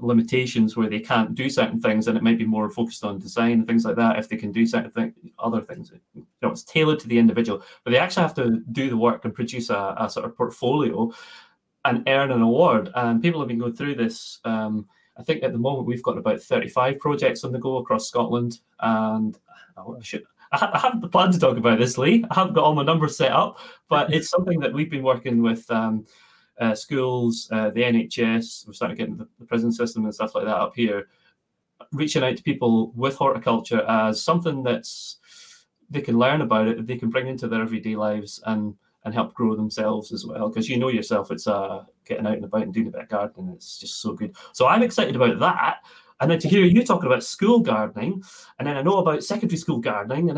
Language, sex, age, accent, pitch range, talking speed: English, male, 20-39, British, 115-155 Hz, 235 wpm